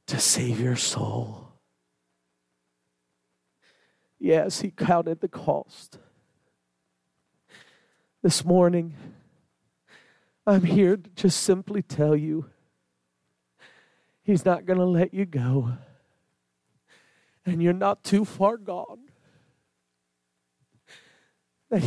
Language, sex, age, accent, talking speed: English, male, 40-59, American, 90 wpm